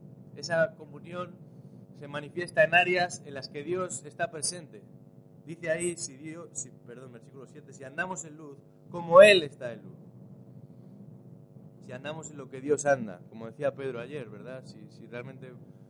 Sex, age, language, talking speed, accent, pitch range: male, 20-39, Spanish, 165 wpm, Spanish, 120-160 Hz